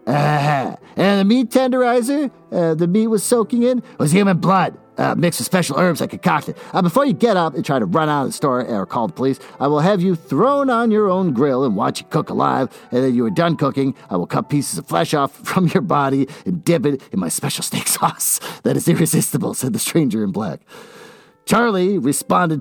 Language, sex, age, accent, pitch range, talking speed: English, male, 40-59, American, 145-215 Hz, 230 wpm